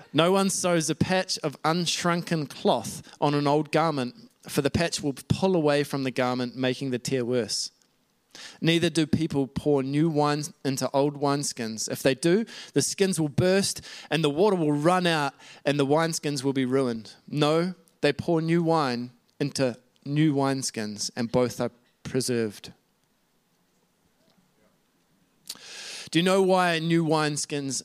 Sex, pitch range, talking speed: male, 135-165 Hz, 155 wpm